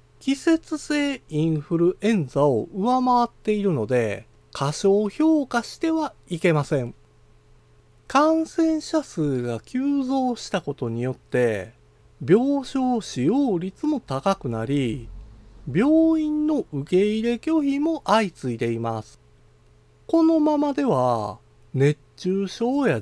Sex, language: male, Japanese